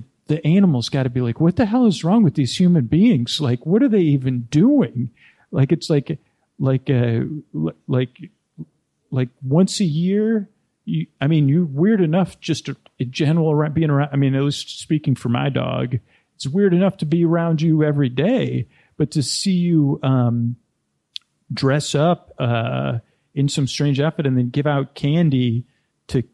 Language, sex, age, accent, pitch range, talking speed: English, male, 40-59, American, 125-160 Hz, 180 wpm